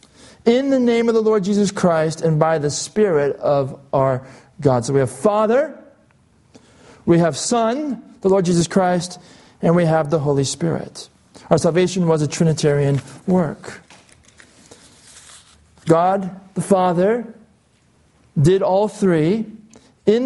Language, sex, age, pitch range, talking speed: English, male, 40-59, 165-220 Hz, 135 wpm